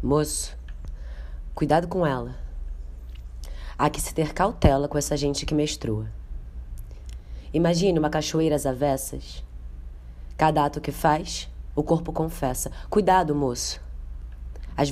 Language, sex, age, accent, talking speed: Portuguese, female, 20-39, Brazilian, 115 wpm